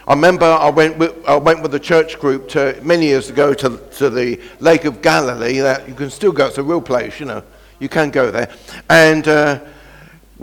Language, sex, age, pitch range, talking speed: English, male, 60-79, 135-195 Hz, 195 wpm